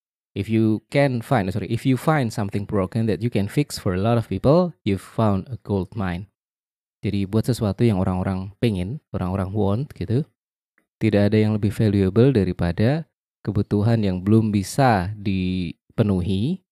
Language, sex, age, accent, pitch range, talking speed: Indonesian, male, 20-39, native, 95-115 Hz, 160 wpm